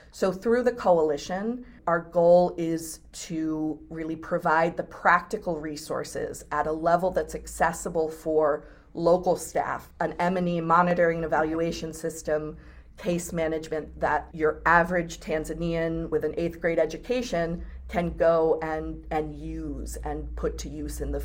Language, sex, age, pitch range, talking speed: English, female, 40-59, 155-180 Hz, 140 wpm